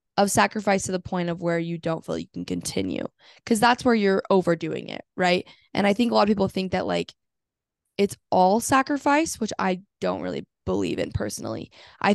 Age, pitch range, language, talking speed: 10-29, 170-200 Hz, English, 205 wpm